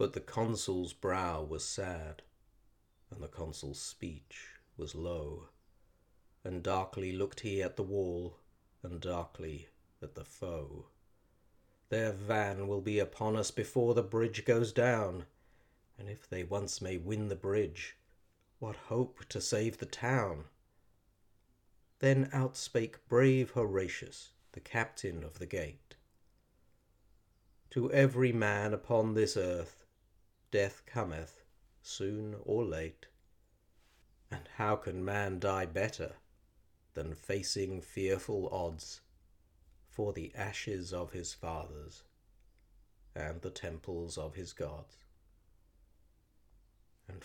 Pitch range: 90-105 Hz